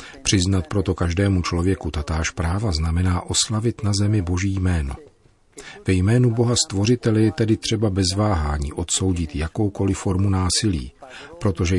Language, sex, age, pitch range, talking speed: Czech, male, 40-59, 85-105 Hz, 130 wpm